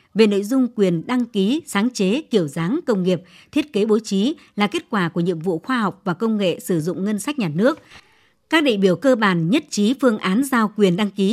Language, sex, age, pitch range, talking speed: Vietnamese, male, 60-79, 180-230 Hz, 245 wpm